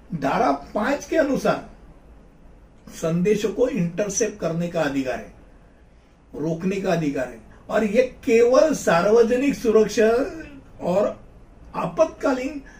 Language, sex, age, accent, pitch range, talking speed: Hindi, male, 60-79, native, 180-235 Hz, 105 wpm